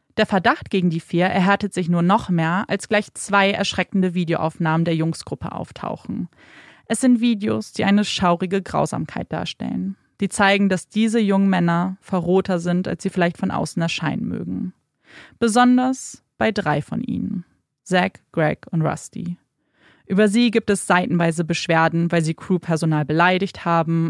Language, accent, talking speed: German, German, 150 wpm